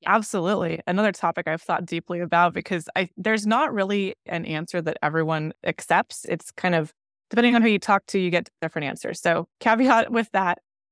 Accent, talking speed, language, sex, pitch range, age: American, 180 wpm, English, female, 165-195 Hz, 20-39